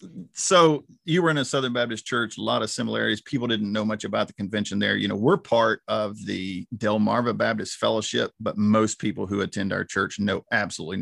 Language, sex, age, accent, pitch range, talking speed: English, male, 40-59, American, 100-125 Hz, 205 wpm